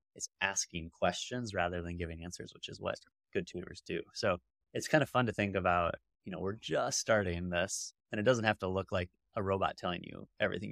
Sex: male